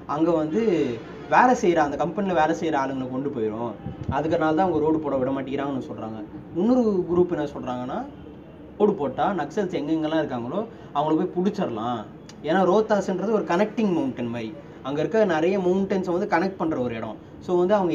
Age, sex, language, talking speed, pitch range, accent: 20-39, male, Tamil, 160 wpm, 130-175 Hz, native